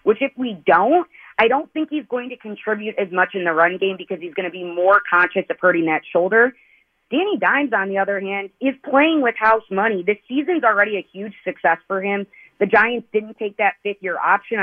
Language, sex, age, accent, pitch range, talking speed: English, female, 30-49, American, 185-245 Hz, 220 wpm